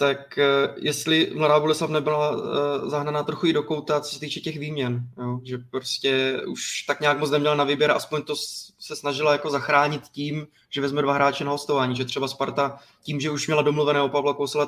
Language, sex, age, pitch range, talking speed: Czech, male, 20-39, 130-145 Hz, 190 wpm